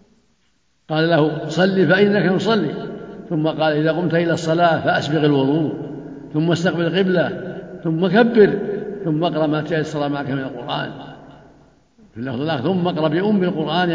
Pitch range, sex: 145-170 Hz, male